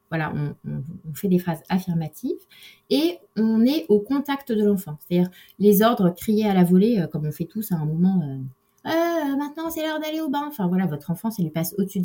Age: 20-39